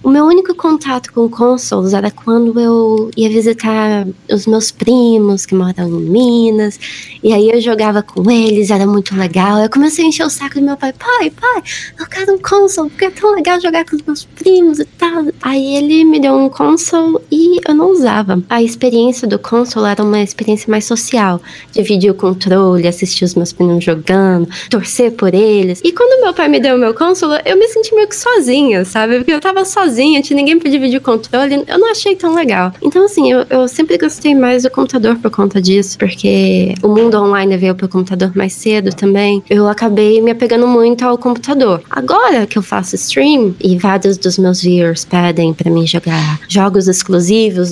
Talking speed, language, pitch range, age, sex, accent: 200 wpm, Portuguese, 200-280 Hz, 20-39, female, Brazilian